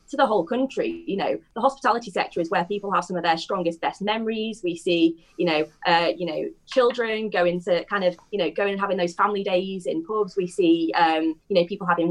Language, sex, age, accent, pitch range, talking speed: English, female, 20-39, British, 170-200 Hz, 240 wpm